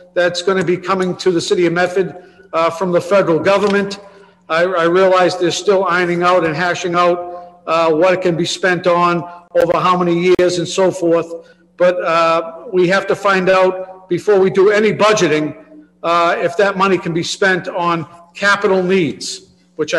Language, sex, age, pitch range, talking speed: English, male, 50-69, 170-190 Hz, 185 wpm